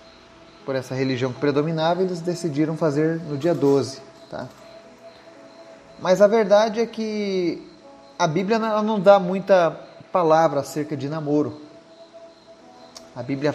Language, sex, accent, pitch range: Portuguese, male, Brazilian, 135-175 Hz